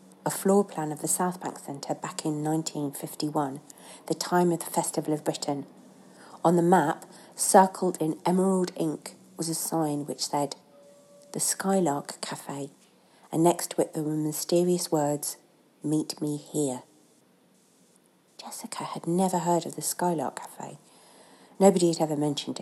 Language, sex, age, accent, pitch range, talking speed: English, female, 40-59, British, 155-190 Hz, 145 wpm